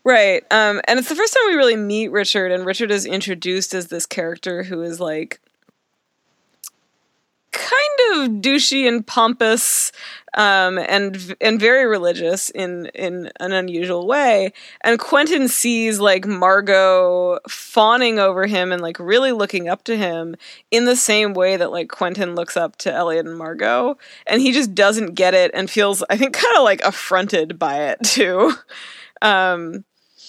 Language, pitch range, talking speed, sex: English, 180-235 Hz, 160 wpm, female